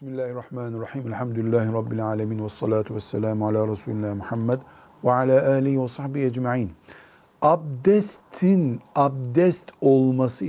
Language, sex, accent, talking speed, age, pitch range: Turkish, male, native, 105 wpm, 60-79, 120-160 Hz